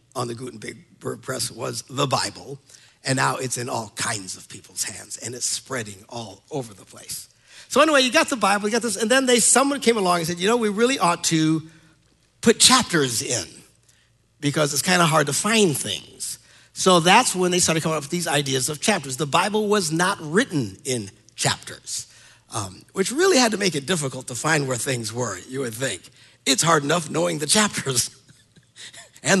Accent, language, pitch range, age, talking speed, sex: American, English, 125-180 Hz, 60-79, 200 wpm, male